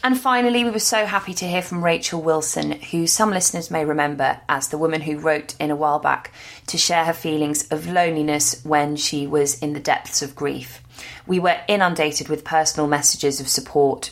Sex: female